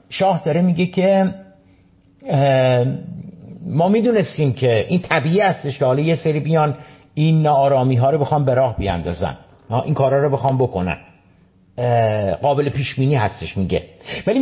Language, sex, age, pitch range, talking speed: Persian, male, 50-69, 100-160 Hz, 135 wpm